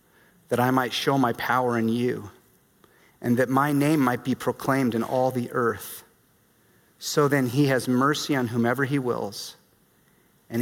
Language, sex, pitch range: English, male, 125-180 Hz